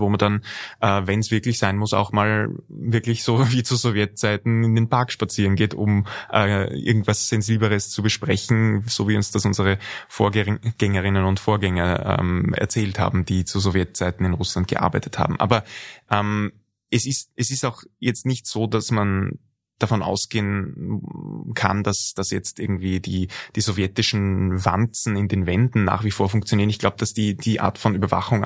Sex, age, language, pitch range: male, 20-39, German, 95-115 Hz